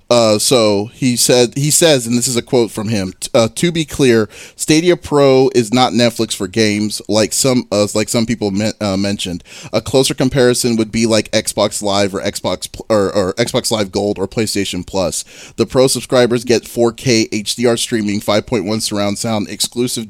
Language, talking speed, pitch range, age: English, 180 wpm, 105-125 Hz, 30-49